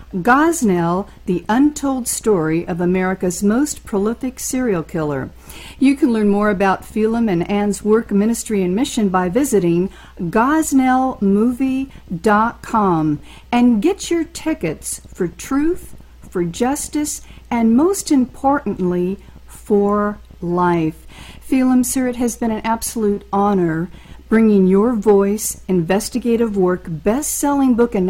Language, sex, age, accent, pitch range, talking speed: English, female, 50-69, American, 185-255 Hz, 115 wpm